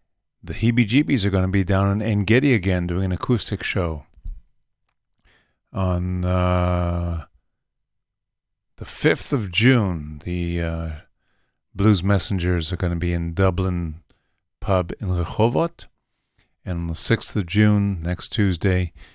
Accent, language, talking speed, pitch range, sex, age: American, English, 130 wpm, 85-105 Hz, male, 50-69